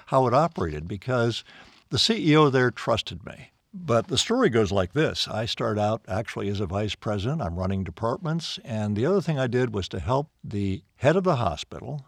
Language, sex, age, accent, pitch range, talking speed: English, male, 60-79, American, 95-145 Hz, 200 wpm